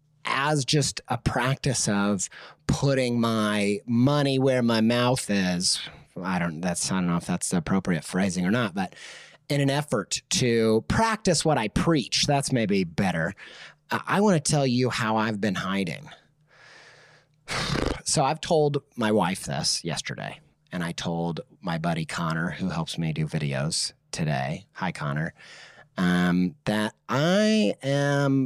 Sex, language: male, English